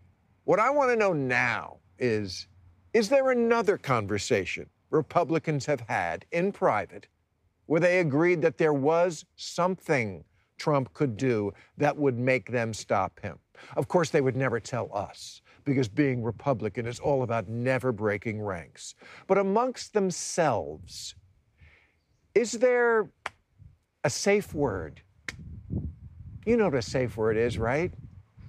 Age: 50-69